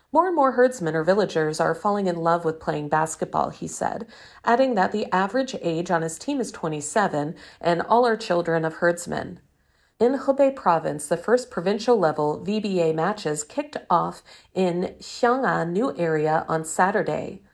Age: 40-59